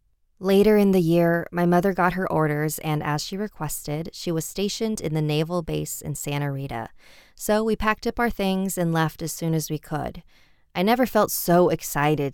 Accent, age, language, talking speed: American, 20-39, English, 200 wpm